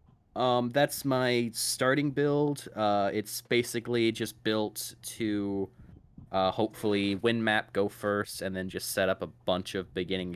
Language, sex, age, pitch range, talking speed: English, male, 20-39, 95-115 Hz, 150 wpm